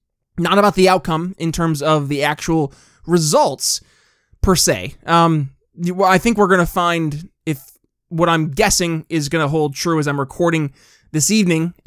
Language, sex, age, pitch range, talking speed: English, male, 20-39, 145-185 Hz, 165 wpm